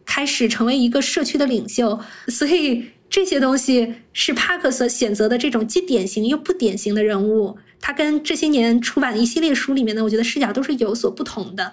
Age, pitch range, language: 20-39, 225-280 Hz, Chinese